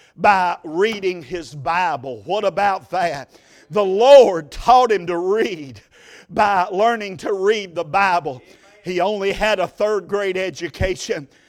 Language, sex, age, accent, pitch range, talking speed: English, male, 50-69, American, 190-220 Hz, 135 wpm